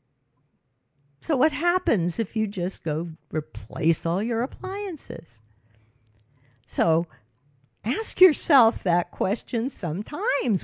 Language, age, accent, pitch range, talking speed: English, 50-69, American, 140-195 Hz, 95 wpm